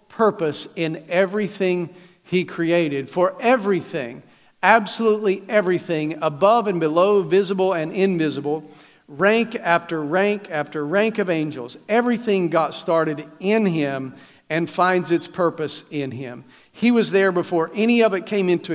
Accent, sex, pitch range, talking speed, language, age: American, male, 155-195 Hz, 135 wpm, English, 50-69